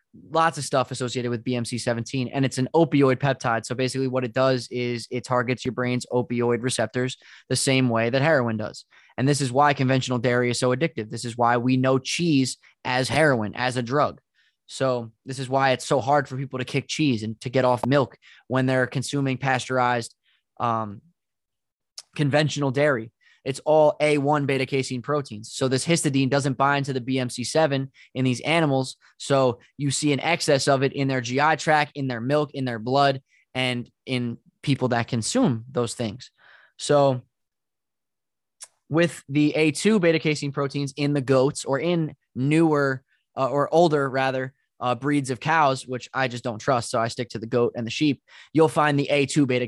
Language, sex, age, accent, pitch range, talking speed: English, male, 20-39, American, 125-145 Hz, 185 wpm